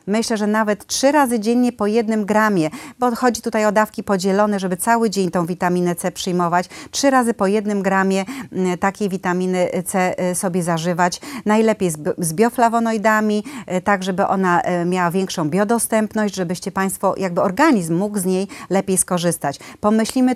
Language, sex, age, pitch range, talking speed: Polish, female, 40-59, 185-230 Hz, 150 wpm